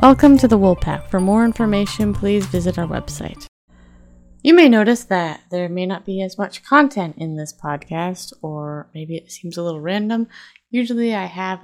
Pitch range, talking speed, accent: 170-215 Hz, 180 wpm, American